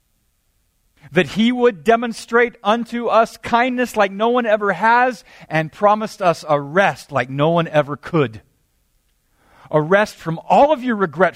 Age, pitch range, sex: 40-59, 125-185 Hz, male